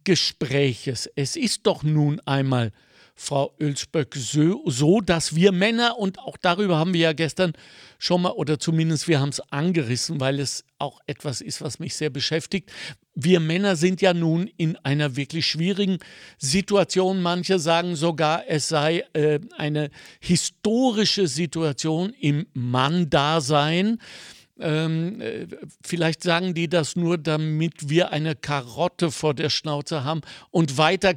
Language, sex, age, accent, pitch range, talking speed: German, male, 60-79, German, 145-180 Hz, 140 wpm